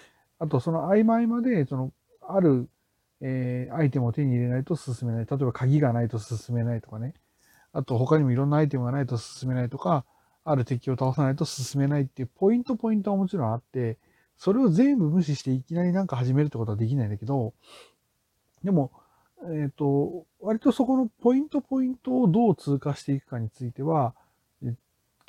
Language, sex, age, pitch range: Japanese, male, 40-59, 125-185 Hz